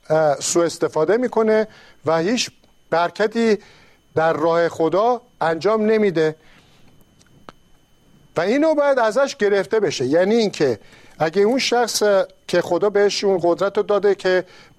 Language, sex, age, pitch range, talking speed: Persian, male, 50-69, 165-225 Hz, 125 wpm